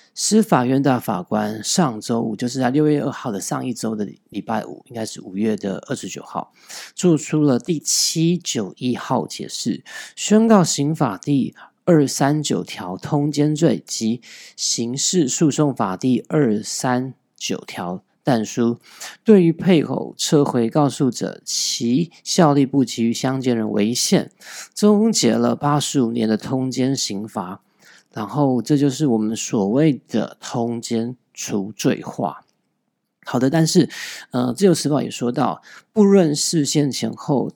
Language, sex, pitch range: Chinese, male, 120-155 Hz